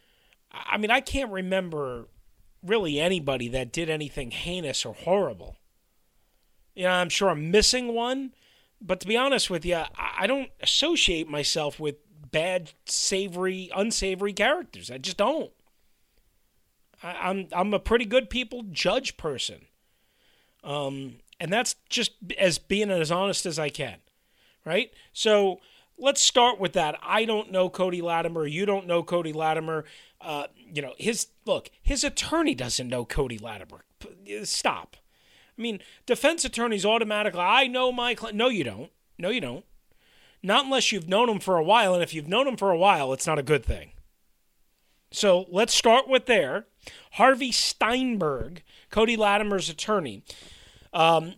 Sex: male